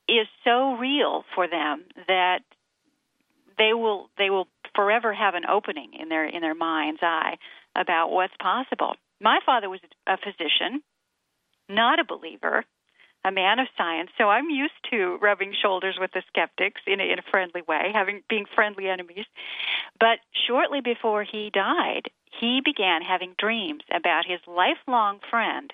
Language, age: English, 40-59